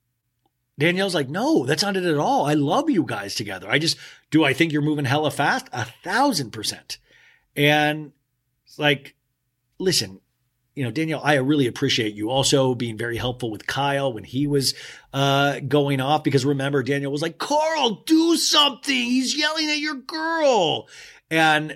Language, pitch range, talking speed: English, 130-190 Hz, 170 wpm